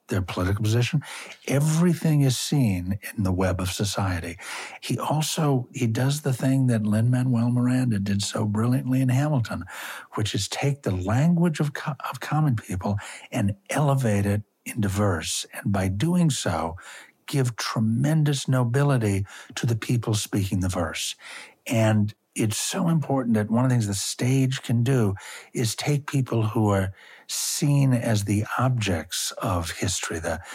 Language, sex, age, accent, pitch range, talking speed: English, male, 60-79, American, 100-130 Hz, 150 wpm